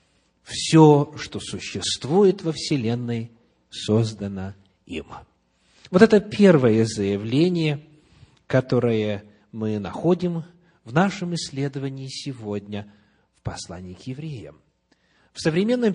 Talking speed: 90 wpm